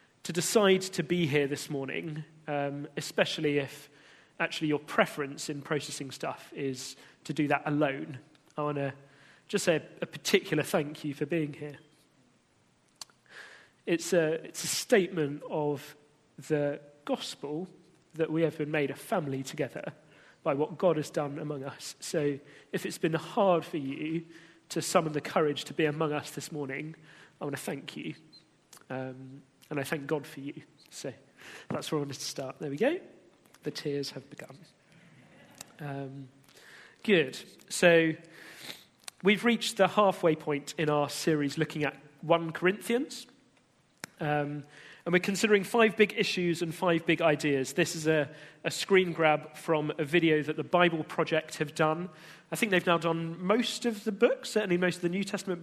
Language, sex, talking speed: English, male, 170 wpm